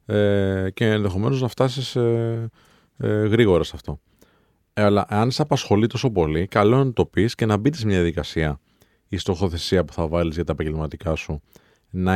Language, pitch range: Greek, 85-115 Hz